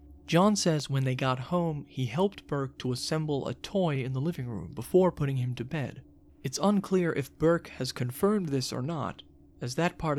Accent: American